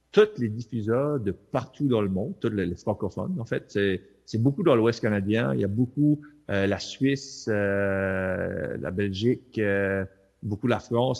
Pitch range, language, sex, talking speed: 95-120 Hz, French, male, 180 wpm